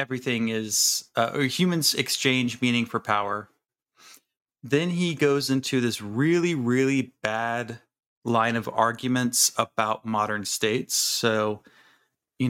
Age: 30-49